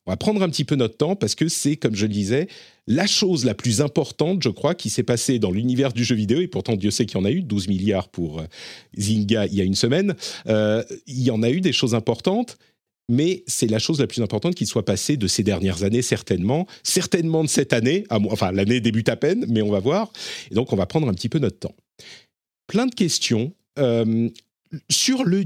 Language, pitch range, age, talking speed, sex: French, 115-165 Hz, 40-59, 240 wpm, male